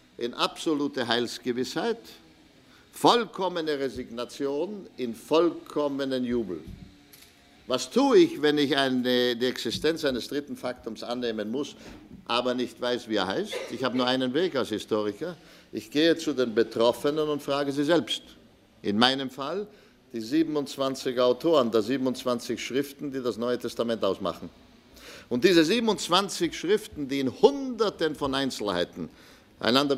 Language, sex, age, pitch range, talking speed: German, male, 50-69, 115-150 Hz, 135 wpm